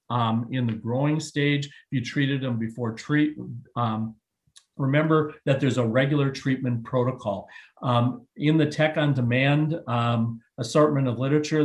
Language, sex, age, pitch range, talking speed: English, male, 50-69, 120-140 Hz, 145 wpm